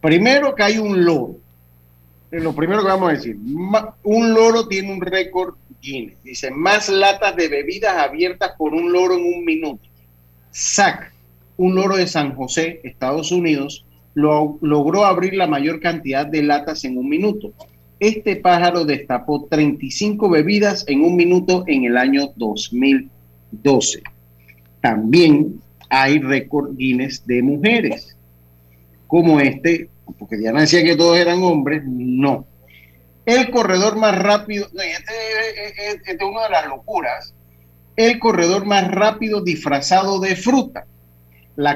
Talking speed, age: 140 wpm, 40-59